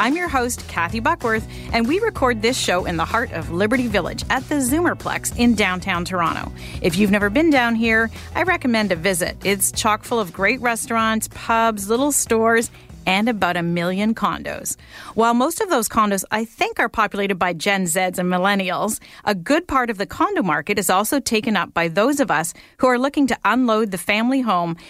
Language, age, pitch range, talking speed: English, 40-59, 195-260 Hz, 200 wpm